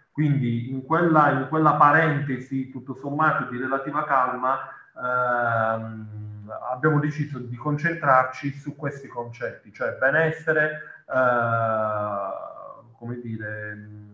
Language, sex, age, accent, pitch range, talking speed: Italian, male, 30-49, native, 120-150 Hz, 95 wpm